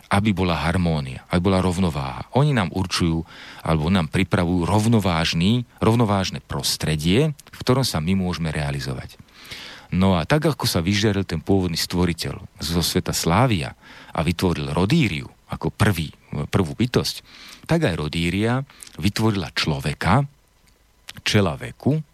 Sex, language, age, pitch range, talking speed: male, Slovak, 40-59, 80-110 Hz, 120 wpm